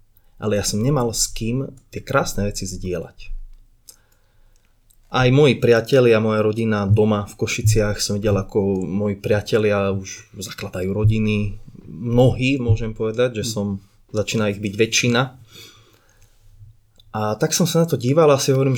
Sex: male